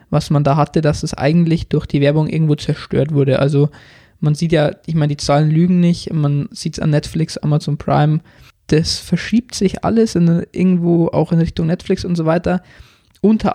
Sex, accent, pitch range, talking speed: male, German, 150-180 Hz, 190 wpm